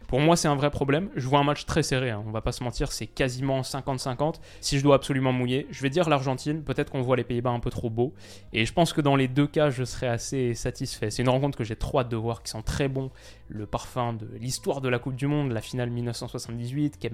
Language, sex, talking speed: French, male, 265 wpm